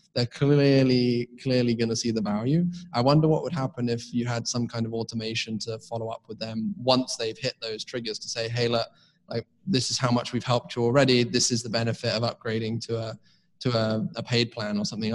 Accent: British